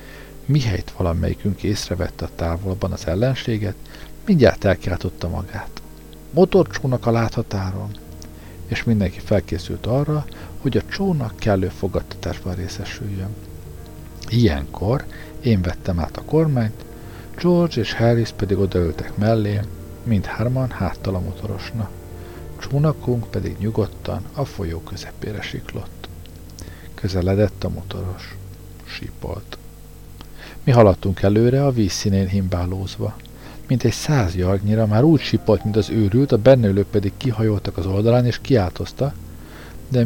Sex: male